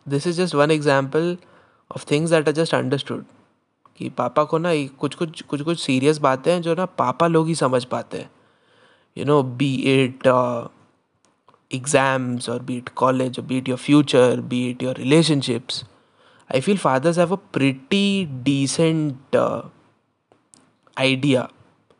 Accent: native